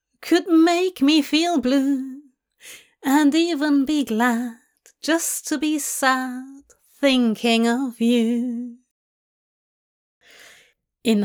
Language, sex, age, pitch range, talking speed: English, female, 30-49, 230-295 Hz, 90 wpm